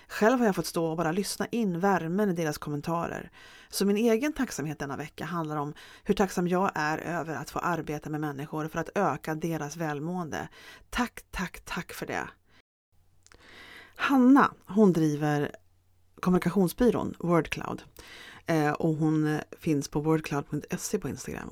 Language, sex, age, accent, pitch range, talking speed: Swedish, female, 30-49, native, 150-195 Hz, 150 wpm